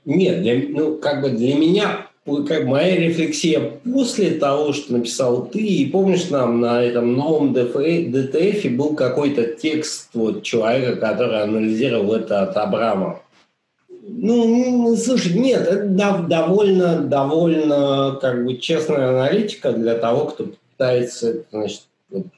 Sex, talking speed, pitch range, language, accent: male, 130 wpm, 120-165 Hz, Russian, native